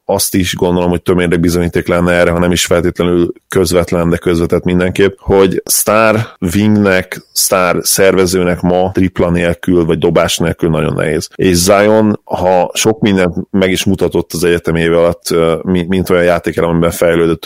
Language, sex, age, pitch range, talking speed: Hungarian, male, 30-49, 85-95 Hz, 160 wpm